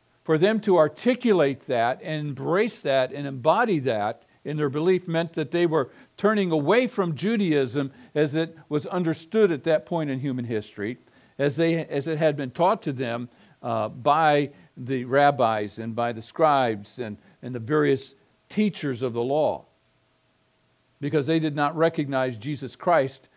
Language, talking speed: English, 165 wpm